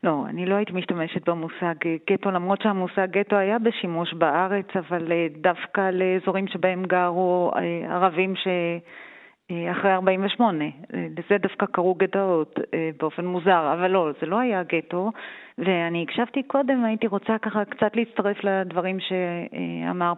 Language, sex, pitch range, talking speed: Hebrew, female, 175-220 Hz, 130 wpm